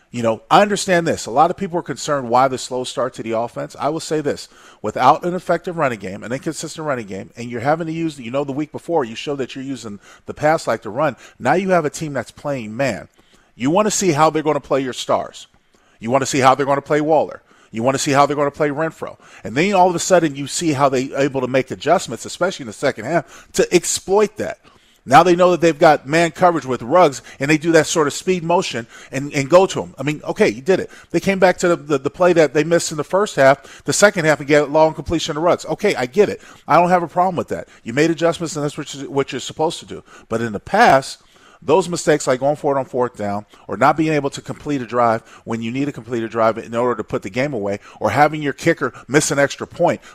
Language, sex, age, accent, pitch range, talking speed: English, male, 40-59, American, 130-165 Hz, 275 wpm